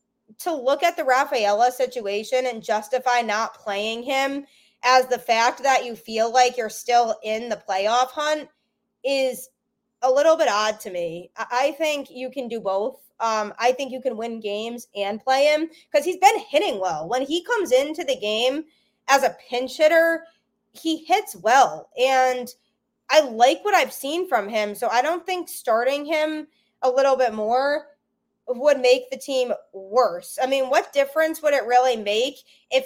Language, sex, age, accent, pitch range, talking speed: English, female, 20-39, American, 225-275 Hz, 175 wpm